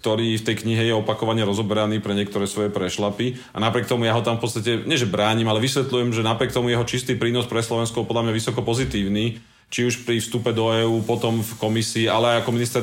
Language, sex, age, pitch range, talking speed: Slovak, male, 30-49, 110-130 Hz, 235 wpm